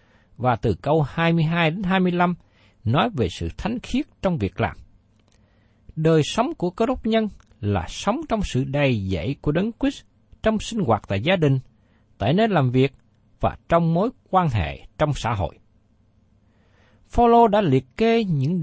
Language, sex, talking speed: Vietnamese, male, 170 wpm